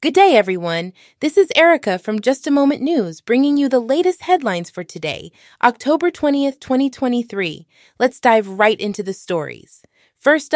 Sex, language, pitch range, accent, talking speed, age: female, English, 215-275 Hz, American, 160 wpm, 20-39